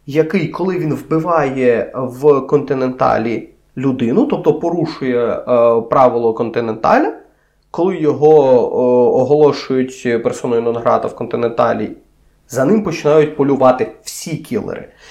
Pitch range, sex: 140-210 Hz, male